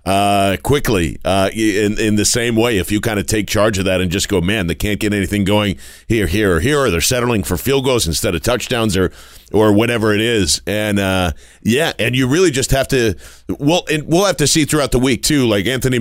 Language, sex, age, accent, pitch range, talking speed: English, male, 40-59, American, 100-125 Hz, 240 wpm